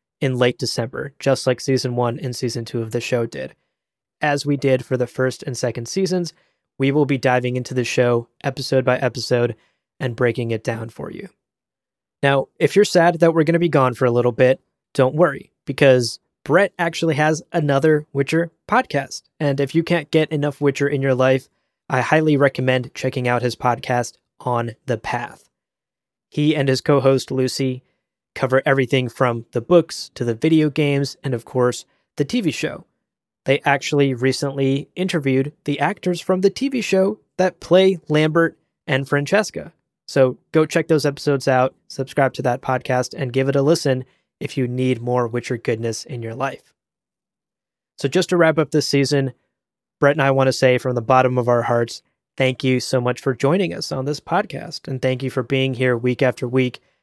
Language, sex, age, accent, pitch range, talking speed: English, male, 20-39, American, 125-150 Hz, 190 wpm